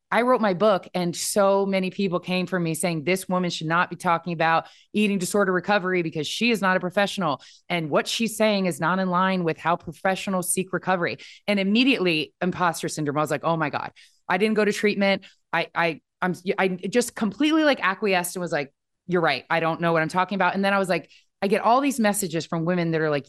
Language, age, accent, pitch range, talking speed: English, 20-39, American, 170-205 Hz, 230 wpm